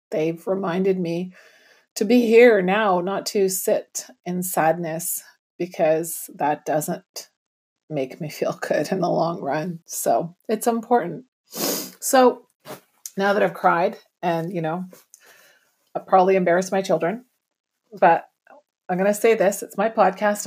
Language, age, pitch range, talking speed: English, 30-49, 170-230 Hz, 140 wpm